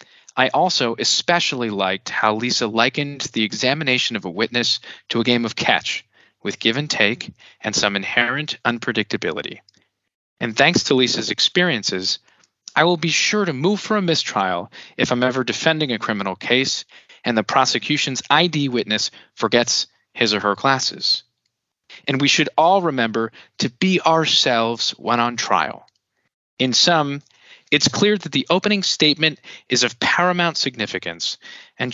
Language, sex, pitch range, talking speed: English, male, 115-160 Hz, 150 wpm